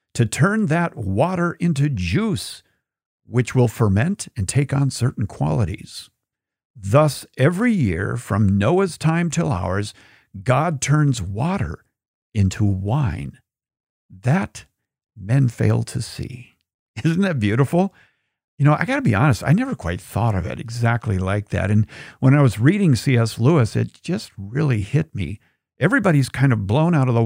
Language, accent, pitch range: English, American, 110-150 Hz